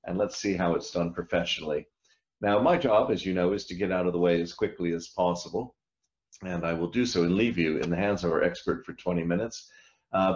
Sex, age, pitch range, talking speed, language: male, 50-69, 85-105 Hz, 245 wpm, English